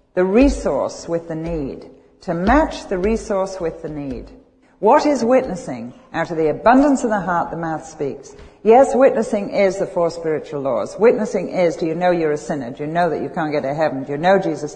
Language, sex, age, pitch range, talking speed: English, female, 60-79, 160-225 Hz, 215 wpm